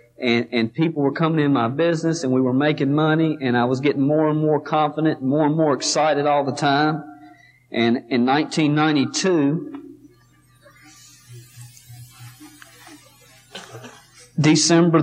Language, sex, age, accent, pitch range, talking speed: English, male, 40-59, American, 130-150 Hz, 130 wpm